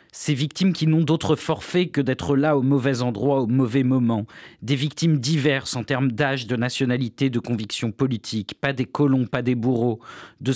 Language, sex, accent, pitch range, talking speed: French, male, French, 120-145 Hz, 190 wpm